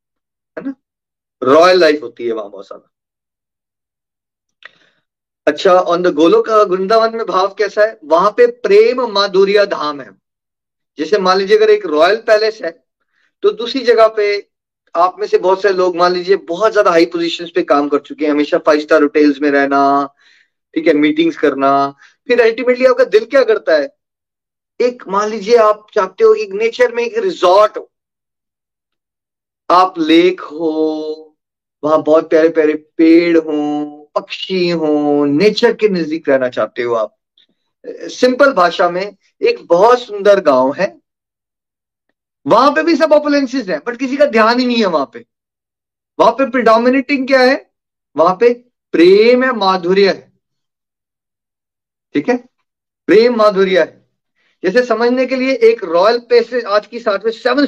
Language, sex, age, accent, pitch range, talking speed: Hindi, male, 30-49, native, 165-265 Hz, 140 wpm